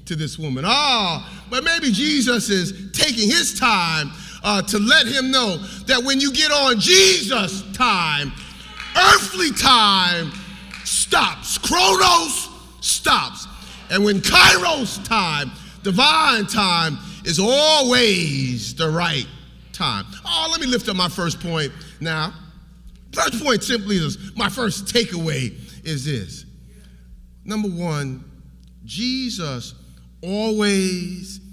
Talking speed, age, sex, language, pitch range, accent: 115 wpm, 40-59, male, English, 150-225 Hz, American